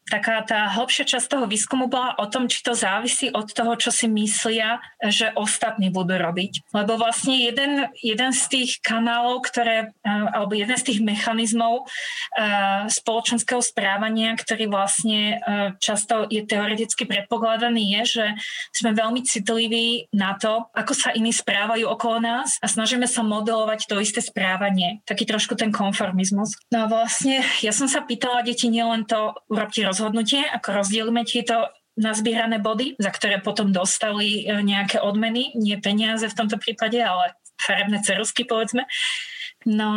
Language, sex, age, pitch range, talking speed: Slovak, female, 30-49, 215-240 Hz, 150 wpm